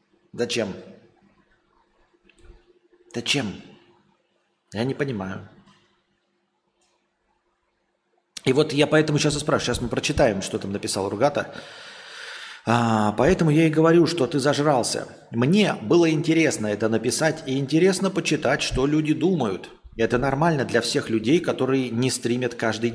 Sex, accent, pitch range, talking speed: male, native, 115-165 Hz, 120 wpm